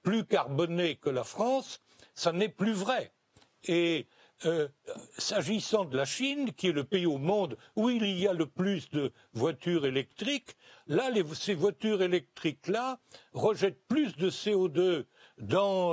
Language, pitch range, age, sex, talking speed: French, 155-205 Hz, 60-79, male, 145 wpm